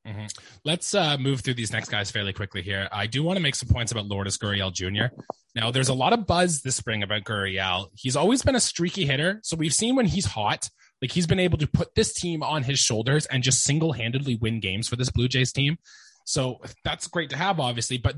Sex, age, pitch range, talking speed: male, 20-39, 115-175 Hz, 240 wpm